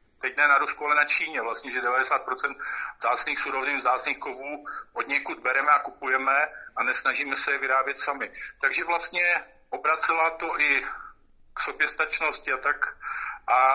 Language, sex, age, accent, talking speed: Czech, male, 50-69, native, 155 wpm